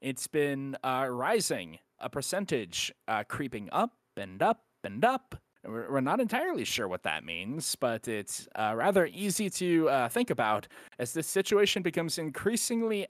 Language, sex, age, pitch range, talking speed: English, male, 30-49, 115-165 Hz, 155 wpm